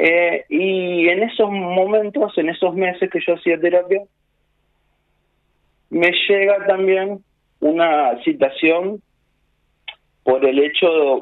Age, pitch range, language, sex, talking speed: 40-59, 125-190 Hz, Spanish, male, 110 wpm